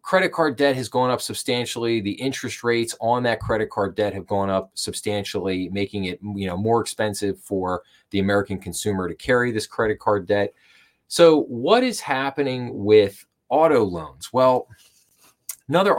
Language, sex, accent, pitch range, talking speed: English, male, American, 100-125 Hz, 165 wpm